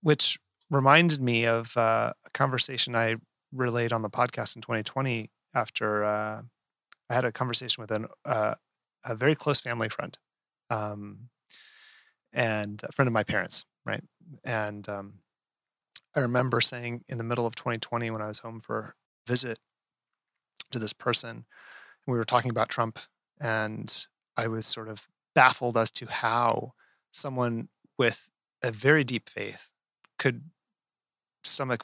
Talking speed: 145 wpm